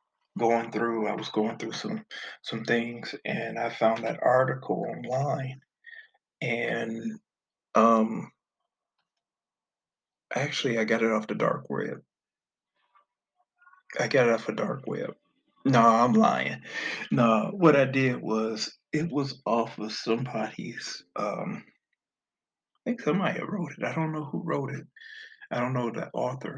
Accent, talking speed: American, 140 wpm